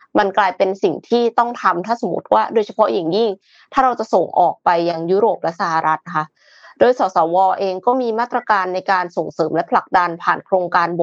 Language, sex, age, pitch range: Thai, female, 20-39, 175-225 Hz